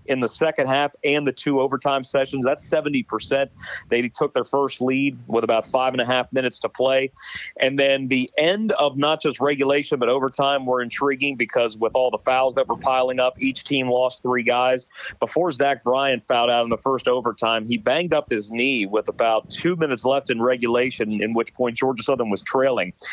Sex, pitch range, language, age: male, 120-140 Hz, English, 40-59